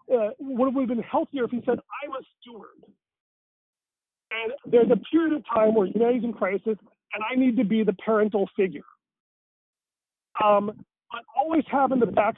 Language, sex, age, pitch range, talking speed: English, male, 40-59, 190-235 Hz, 180 wpm